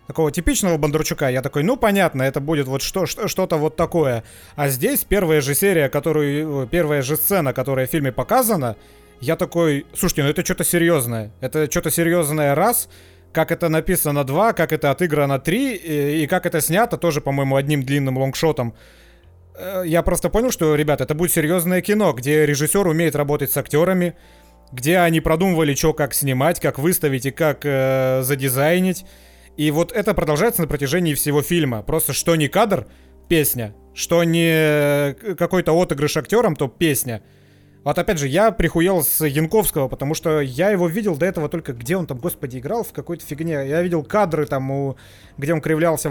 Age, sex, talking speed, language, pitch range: 30-49, male, 175 wpm, Russian, 140-175 Hz